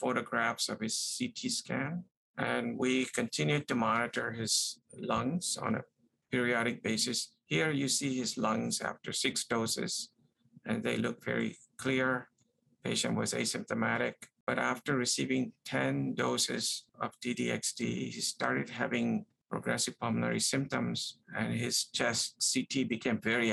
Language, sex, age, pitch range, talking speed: English, male, 50-69, 110-135 Hz, 130 wpm